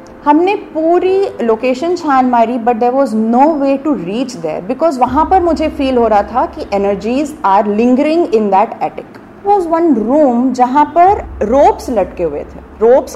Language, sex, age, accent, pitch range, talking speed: Hindi, female, 30-49, native, 230-300 Hz, 175 wpm